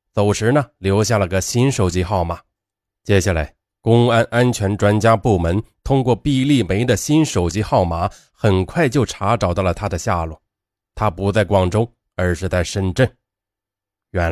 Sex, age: male, 20-39